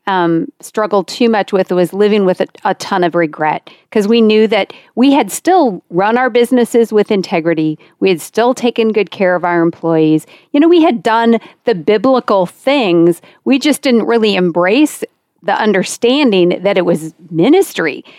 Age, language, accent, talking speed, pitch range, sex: 40-59, English, American, 175 wpm, 180-235 Hz, female